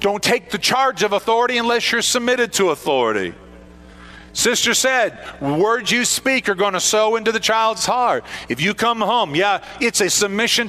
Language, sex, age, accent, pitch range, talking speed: English, male, 50-69, American, 195-240 Hz, 180 wpm